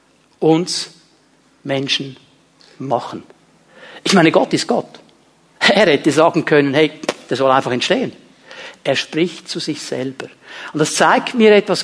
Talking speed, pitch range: 135 wpm, 160-255 Hz